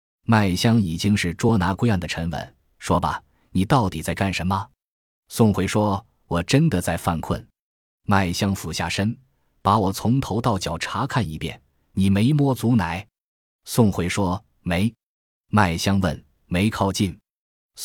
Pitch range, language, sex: 90-110 Hz, Chinese, male